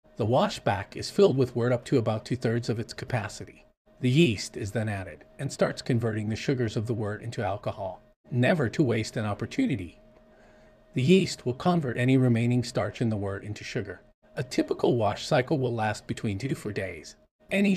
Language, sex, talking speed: English, male, 195 wpm